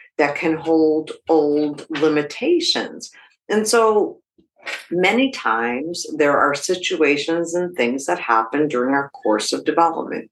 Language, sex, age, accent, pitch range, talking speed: English, female, 50-69, American, 140-205 Hz, 120 wpm